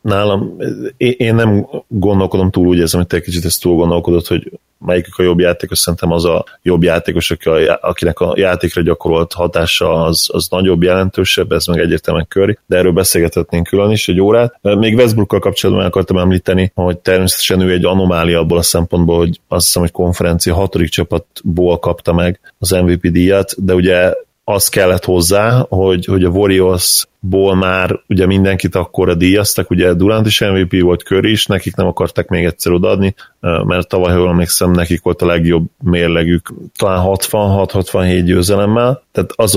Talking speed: 170 wpm